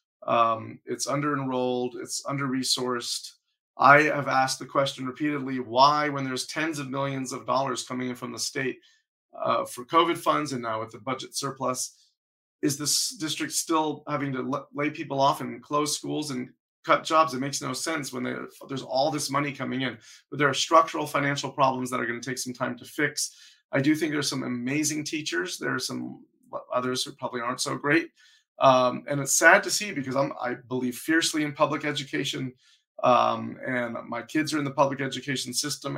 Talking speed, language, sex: 190 wpm, English, male